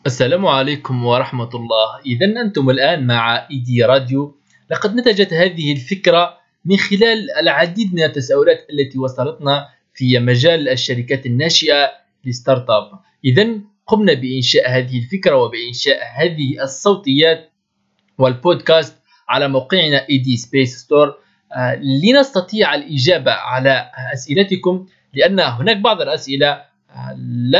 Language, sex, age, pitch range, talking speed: Arabic, male, 20-39, 130-180 Hz, 105 wpm